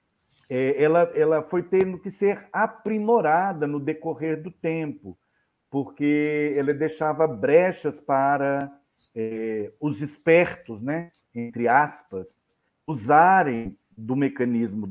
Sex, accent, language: male, Brazilian, Portuguese